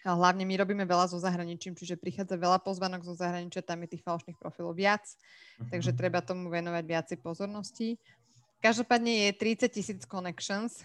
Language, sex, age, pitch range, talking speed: Slovak, female, 20-39, 170-210 Hz, 160 wpm